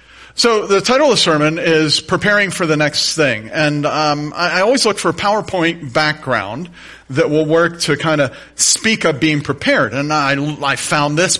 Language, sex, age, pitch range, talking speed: English, male, 40-59, 140-185 Hz, 195 wpm